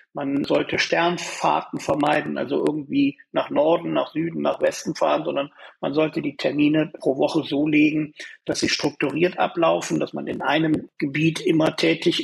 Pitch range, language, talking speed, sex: 150-200 Hz, German, 160 wpm, male